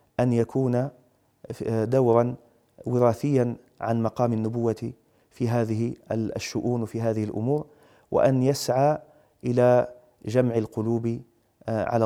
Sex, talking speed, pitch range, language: male, 95 wpm, 110-125 Hz, Arabic